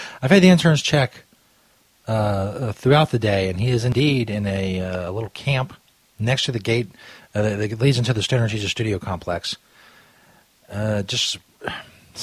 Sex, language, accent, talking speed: male, English, American, 165 wpm